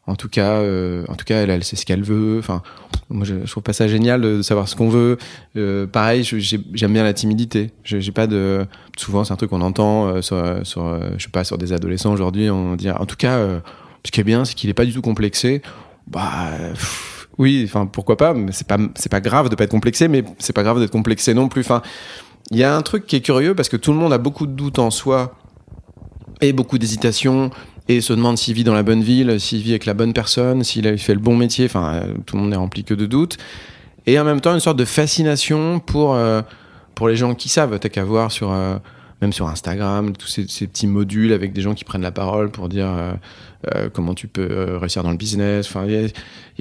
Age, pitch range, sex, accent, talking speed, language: 20-39, 100-125 Hz, male, French, 255 wpm, French